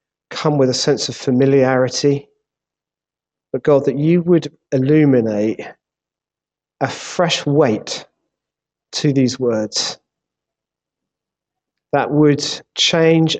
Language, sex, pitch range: English, male, 130-155 Hz